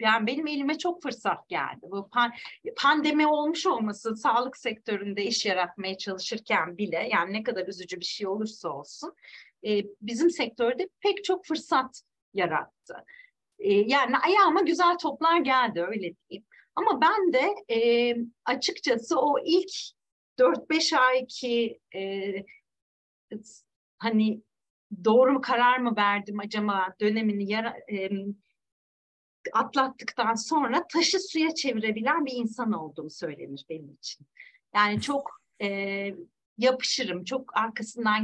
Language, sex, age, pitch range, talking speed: Turkish, female, 40-59, 200-285 Hz, 120 wpm